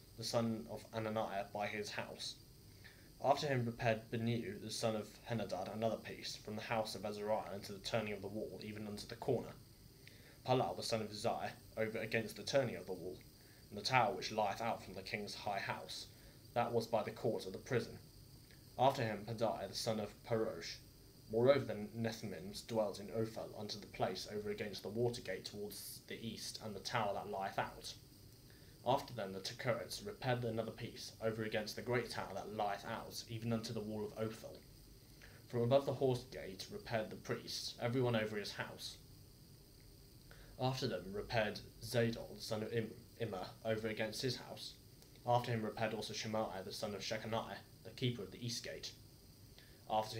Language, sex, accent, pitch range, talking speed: English, male, British, 110-125 Hz, 185 wpm